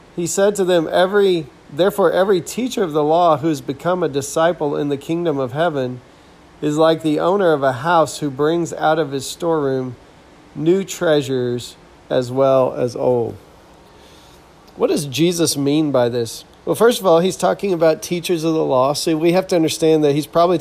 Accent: American